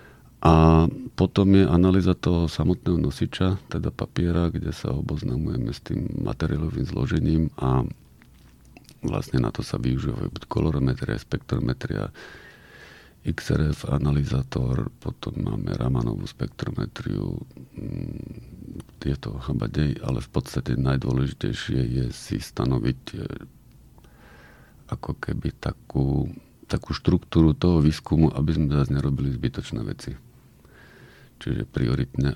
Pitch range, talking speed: 70-80 Hz, 100 wpm